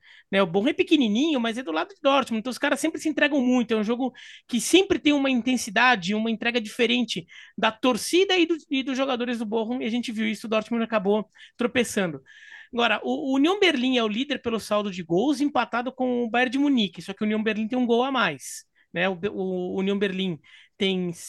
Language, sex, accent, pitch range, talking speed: Portuguese, male, Brazilian, 215-285 Hz, 230 wpm